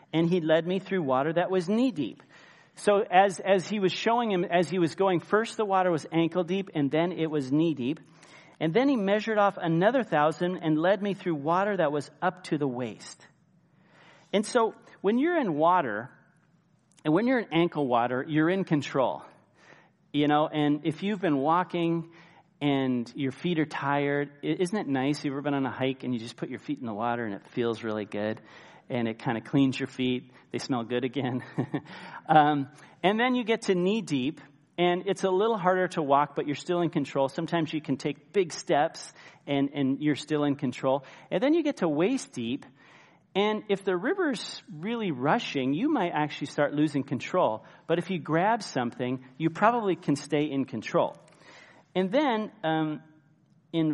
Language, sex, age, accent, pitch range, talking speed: English, male, 40-59, American, 140-185 Hz, 195 wpm